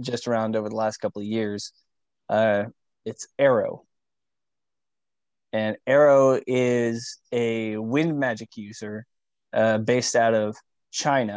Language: English